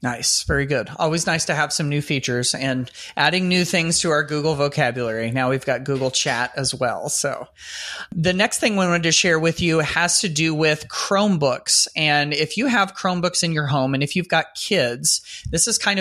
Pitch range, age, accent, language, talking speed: 140-175 Hz, 30-49, American, English, 210 wpm